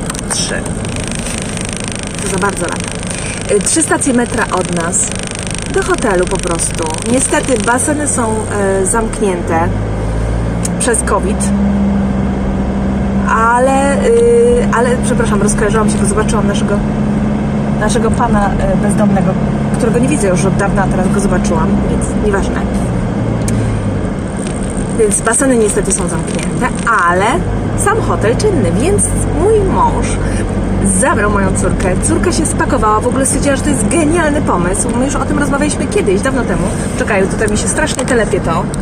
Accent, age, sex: native, 20-39, female